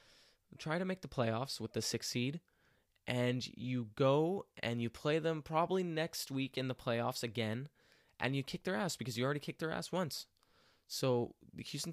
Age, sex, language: 20-39, male, English